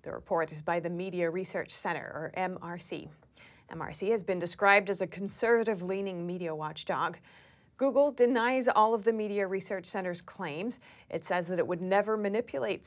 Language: English